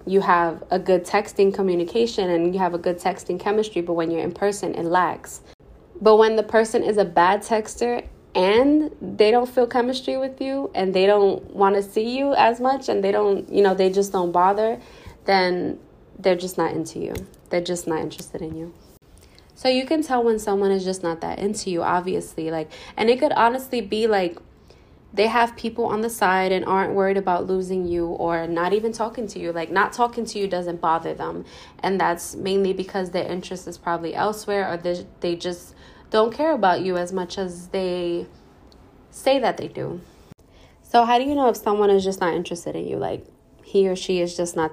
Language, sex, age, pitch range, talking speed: English, female, 20-39, 175-220 Hz, 210 wpm